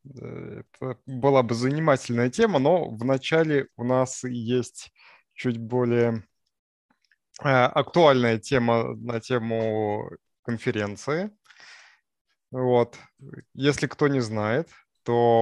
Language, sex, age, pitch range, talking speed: Russian, male, 20-39, 115-140 Hz, 90 wpm